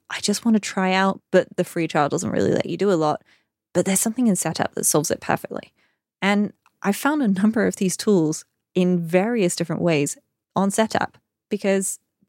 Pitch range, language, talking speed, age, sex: 170-215 Hz, English, 200 wpm, 20-39, female